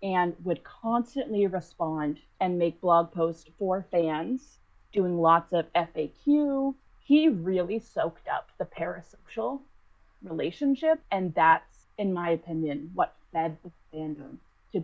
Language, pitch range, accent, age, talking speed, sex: English, 155-215 Hz, American, 30-49, 125 wpm, female